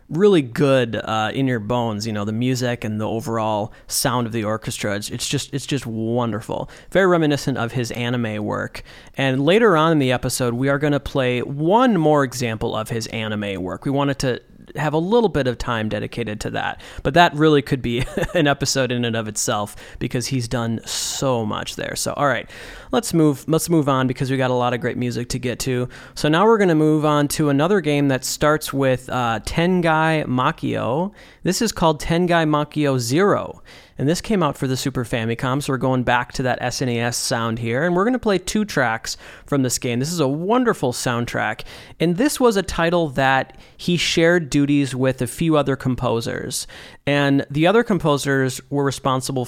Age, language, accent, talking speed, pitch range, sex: 30-49, English, American, 205 wpm, 120-150 Hz, male